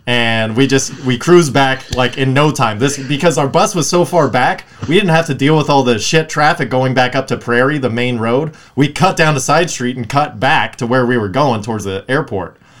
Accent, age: American, 20-39